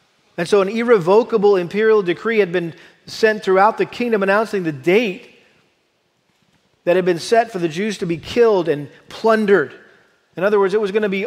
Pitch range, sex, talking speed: 175-215 Hz, male, 185 wpm